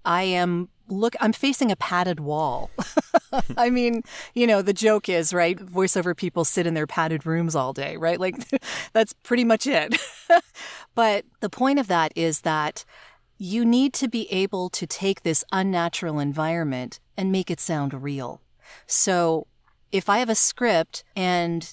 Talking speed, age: 165 wpm, 30-49